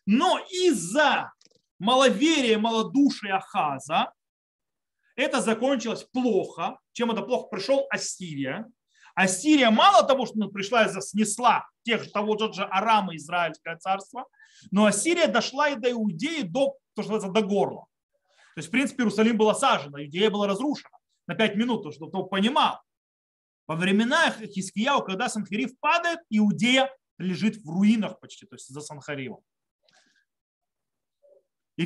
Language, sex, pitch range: Russian, male, 185-265 Hz